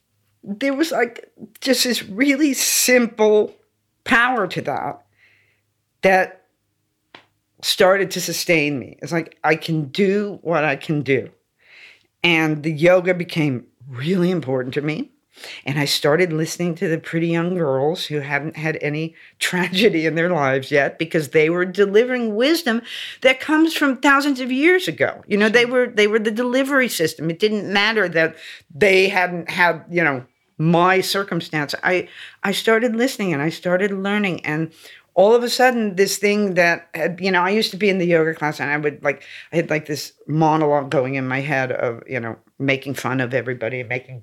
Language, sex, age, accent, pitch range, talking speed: English, female, 50-69, American, 150-210 Hz, 180 wpm